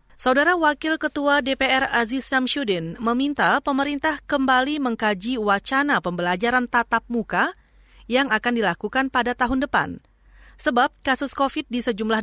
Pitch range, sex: 210-275 Hz, female